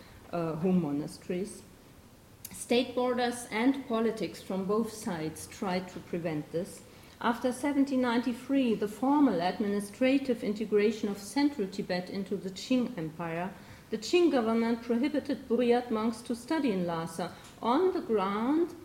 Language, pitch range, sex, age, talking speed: French, 185-250 Hz, female, 40-59, 125 wpm